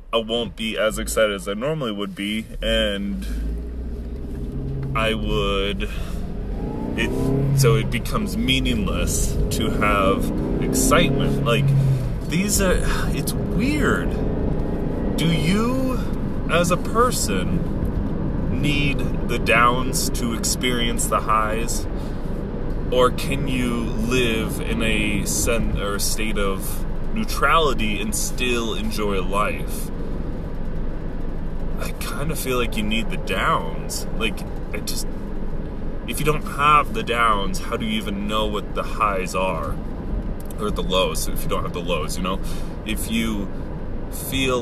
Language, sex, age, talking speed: English, male, 20-39, 125 wpm